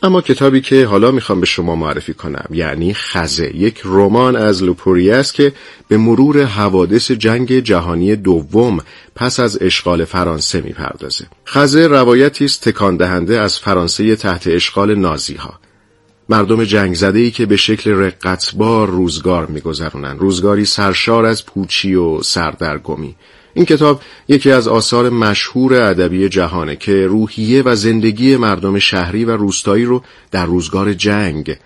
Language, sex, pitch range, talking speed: Persian, male, 90-115 Hz, 140 wpm